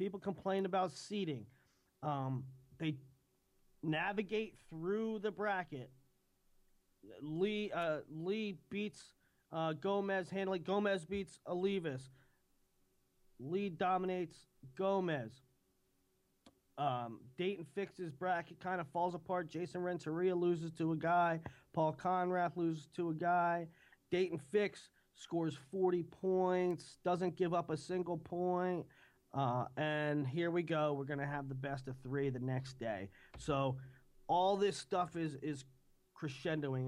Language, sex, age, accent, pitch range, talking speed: English, male, 30-49, American, 135-180 Hz, 125 wpm